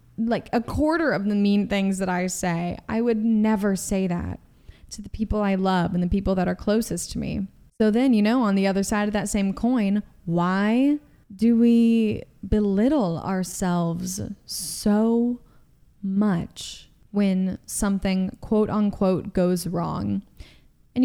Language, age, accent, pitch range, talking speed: English, 20-39, American, 185-230 Hz, 155 wpm